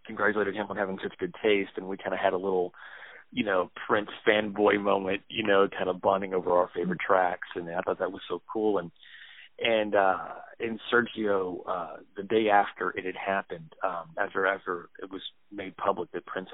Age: 40-59